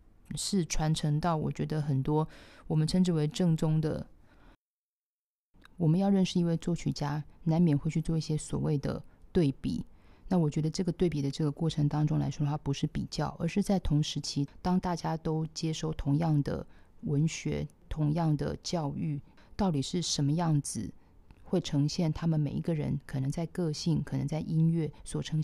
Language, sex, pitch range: Chinese, female, 150-175 Hz